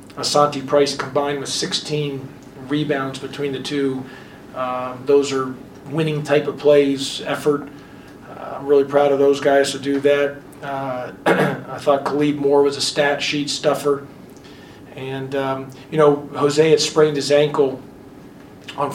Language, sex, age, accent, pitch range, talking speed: English, male, 40-59, American, 135-145 Hz, 150 wpm